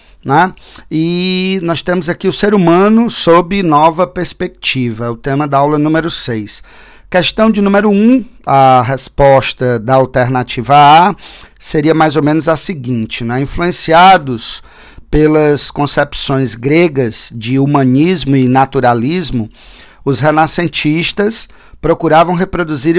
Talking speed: 115 wpm